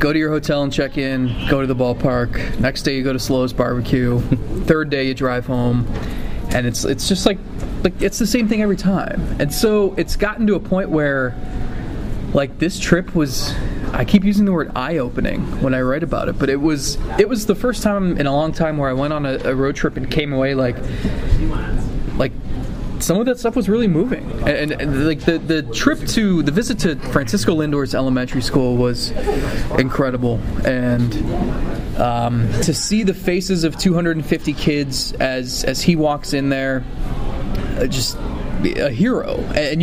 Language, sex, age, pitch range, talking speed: English, male, 20-39, 130-180 Hz, 190 wpm